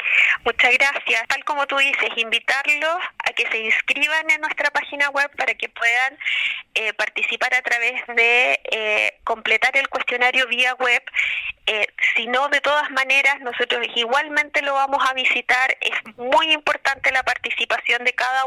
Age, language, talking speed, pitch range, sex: 20-39, Spanish, 155 wpm, 230-270 Hz, female